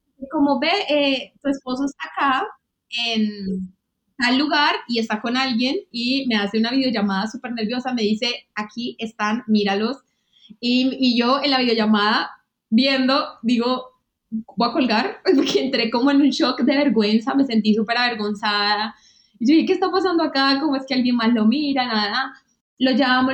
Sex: female